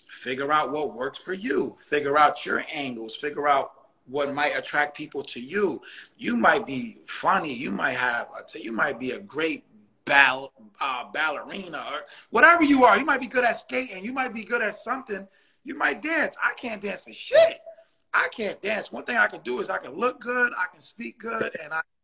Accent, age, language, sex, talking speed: American, 30-49, English, male, 210 wpm